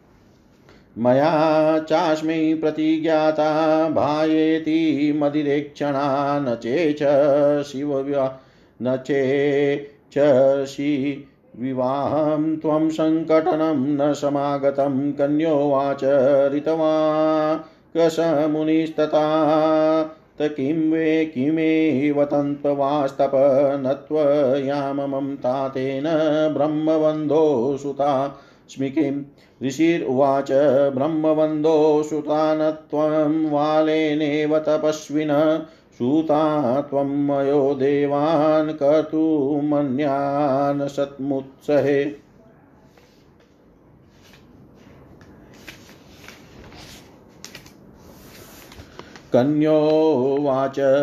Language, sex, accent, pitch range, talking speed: Hindi, male, native, 140-155 Hz, 35 wpm